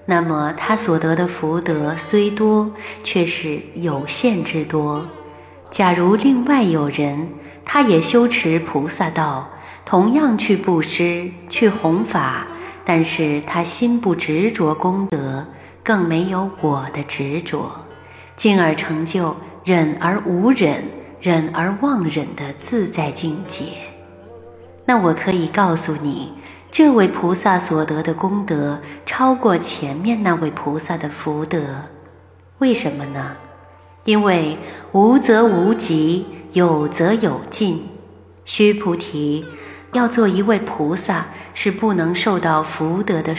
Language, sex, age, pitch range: Chinese, female, 30-49, 155-200 Hz